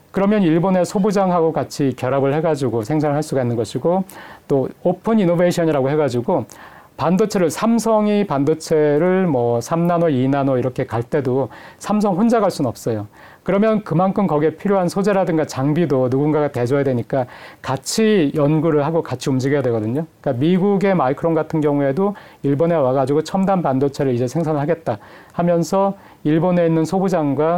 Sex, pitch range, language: male, 130-175 Hz, Korean